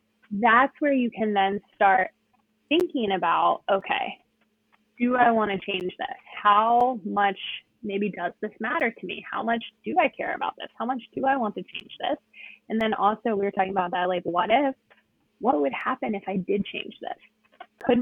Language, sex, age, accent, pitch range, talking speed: English, female, 20-39, American, 195-245 Hz, 190 wpm